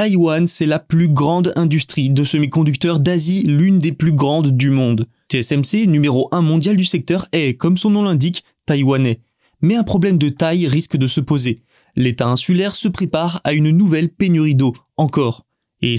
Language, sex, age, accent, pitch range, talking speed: French, male, 20-39, French, 140-175 Hz, 175 wpm